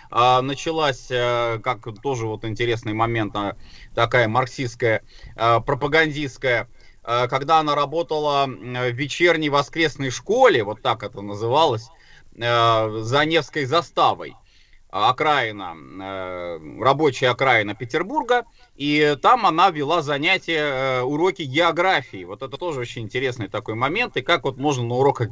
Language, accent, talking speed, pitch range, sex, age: Russian, native, 110 wpm, 120-160 Hz, male, 30-49